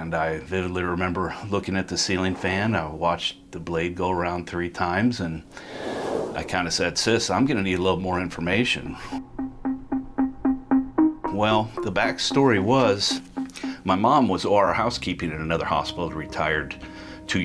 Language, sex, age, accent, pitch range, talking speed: English, male, 40-59, American, 80-95 Hz, 150 wpm